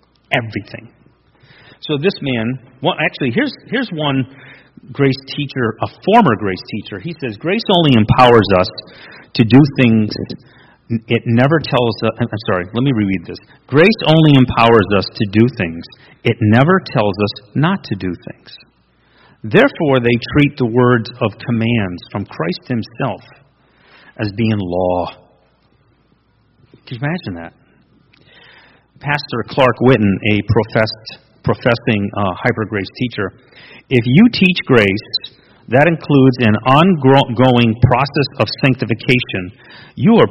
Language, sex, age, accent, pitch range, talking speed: English, male, 40-59, American, 110-135 Hz, 130 wpm